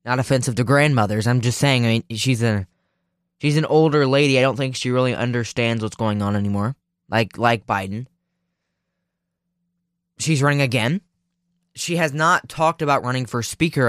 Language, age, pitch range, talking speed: English, 10-29, 115-155 Hz, 170 wpm